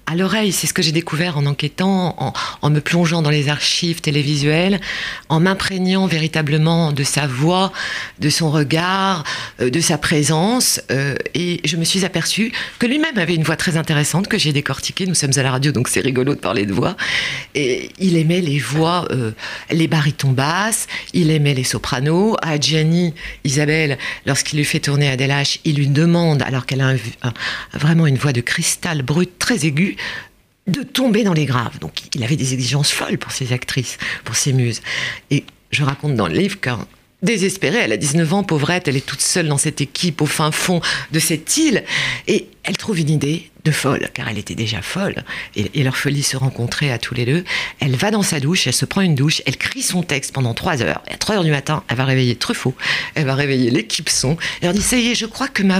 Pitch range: 140-185 Hz